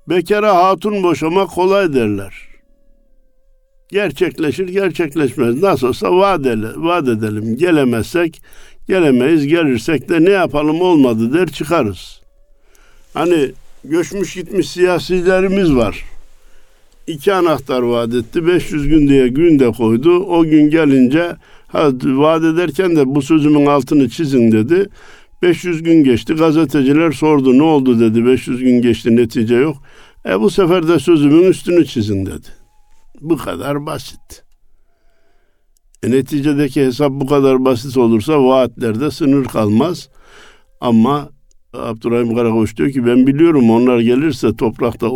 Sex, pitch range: male, 120-175 Hz